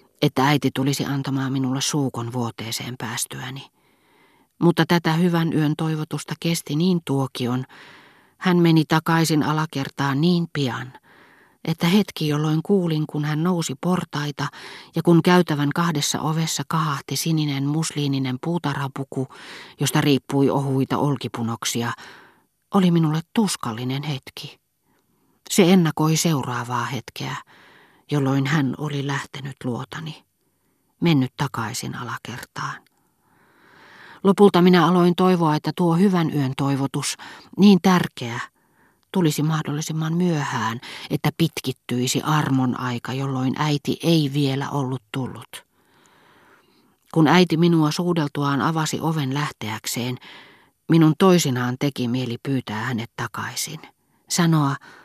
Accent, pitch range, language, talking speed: native, 135-165 Hz, Finnish, 105 wpm